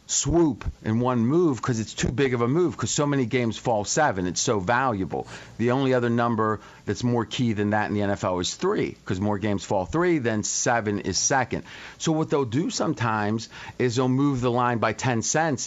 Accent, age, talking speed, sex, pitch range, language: American, 40-59, 215 wpm, male, 105-140 Hz, English